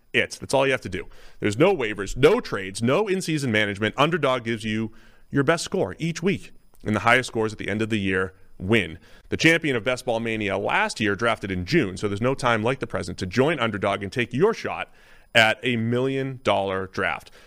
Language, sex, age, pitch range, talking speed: English, male, 30-49, 110-150 Hz, 220 wpm